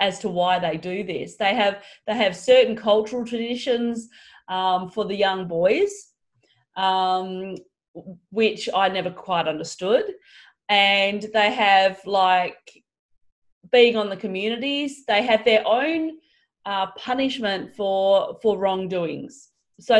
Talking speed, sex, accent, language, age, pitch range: 125 wpm, female, Australian, English, 30-49, 190-230 Hz